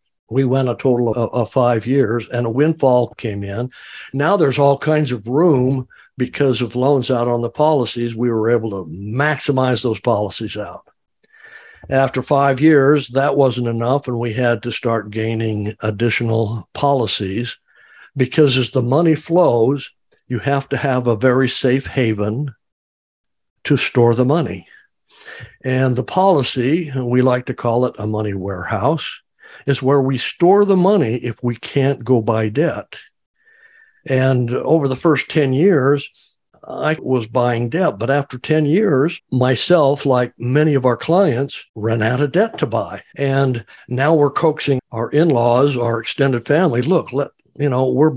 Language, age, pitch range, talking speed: English, 60-79, 120-140 Hz, 160 wpm